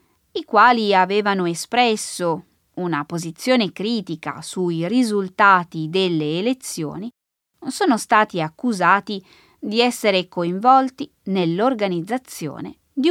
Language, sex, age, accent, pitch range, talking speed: Italian, female, 20-39, native, 170-245 Hz, 85 wpm